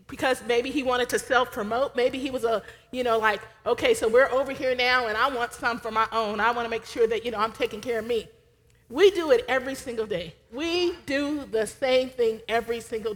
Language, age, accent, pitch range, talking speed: English, 40-59, American, 235-305 Hz, 235 wpm